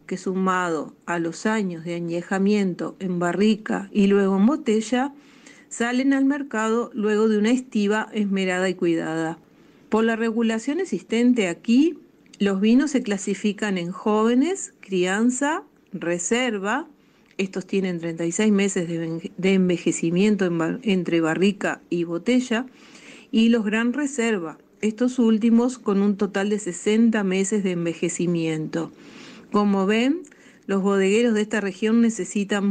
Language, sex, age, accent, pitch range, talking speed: Spanish, female, 40-59, Argentinian, 185-235 Hz, 130 wpm